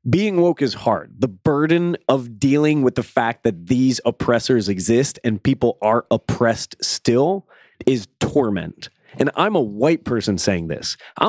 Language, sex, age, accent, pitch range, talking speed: English, male, 30-49, American, 110-150 Hz, 160 wpm